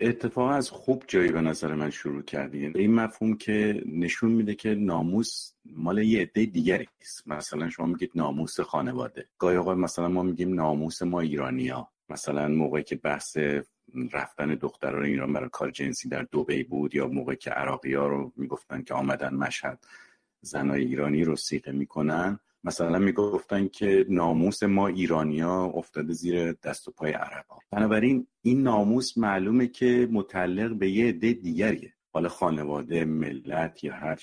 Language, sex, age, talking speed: Persian, male, 50-69, 155 wpm